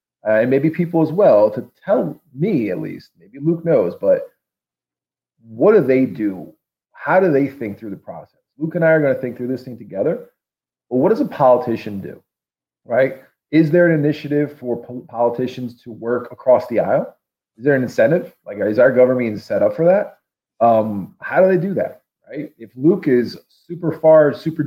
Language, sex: English, male